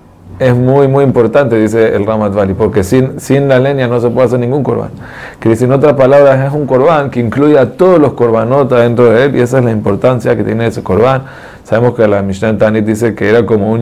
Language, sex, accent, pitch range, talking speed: Spanish, male, Argentinian, 105-125 Hz, 240 wpm